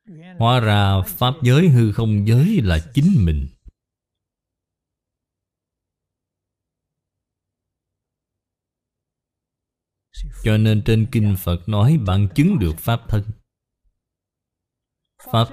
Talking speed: 85 wpm